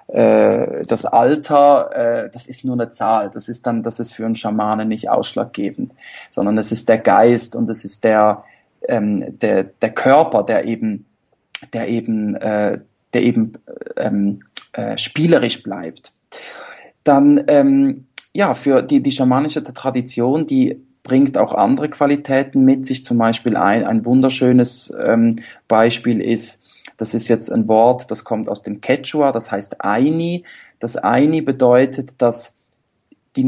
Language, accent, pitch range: German, German, 120-155 Hz